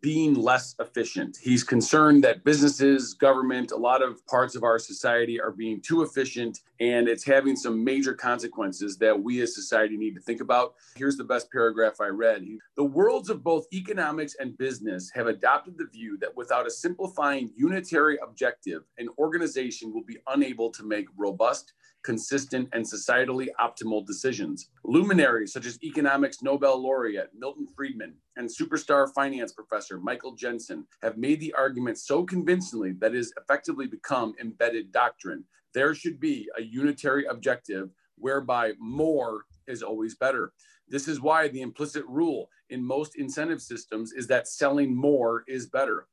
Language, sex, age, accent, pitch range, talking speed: English, male, 40-59, American, 120-155 Hz, 160 wpm